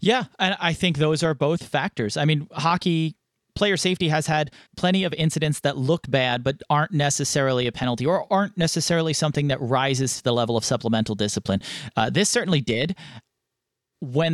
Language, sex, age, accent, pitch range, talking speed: English, male, 30-49, American, 130-165 Hz, 180 wpm